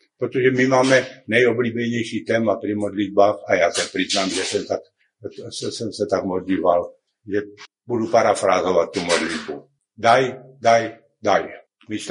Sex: male